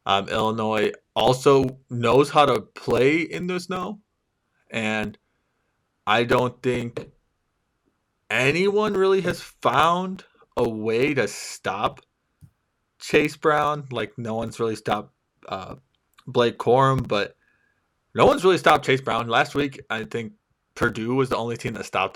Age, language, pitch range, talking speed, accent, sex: 20-39, English, 110-135 Hz, 135 wpm, American, male